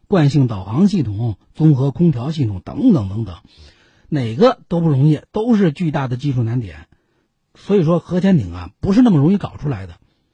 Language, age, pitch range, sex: Chinese, 50-69, 115-170 Hz, male